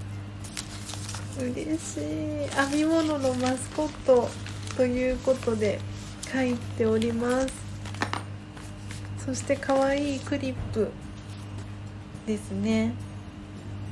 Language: Japanese